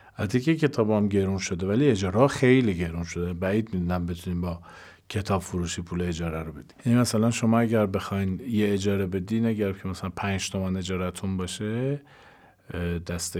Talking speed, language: 160 wpm, Persian